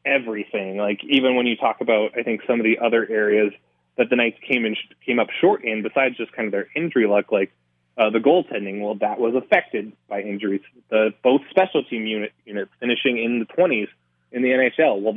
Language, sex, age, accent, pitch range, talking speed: English, male, 20-39, American, 100-120 Hz, 220 wpm